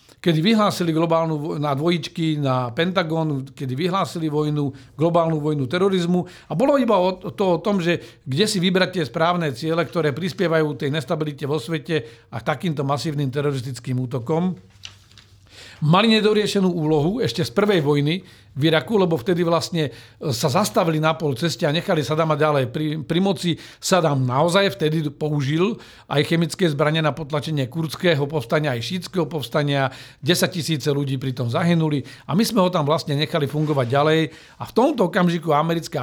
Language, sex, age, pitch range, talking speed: Slovak, male, 50-69, 145-175 Hz, 160 wpm